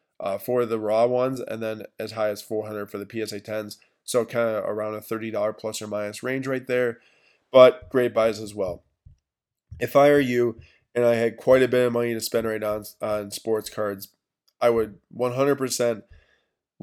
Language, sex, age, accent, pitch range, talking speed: English, male, 20-39, American, 110-130 Hz, 200 wpm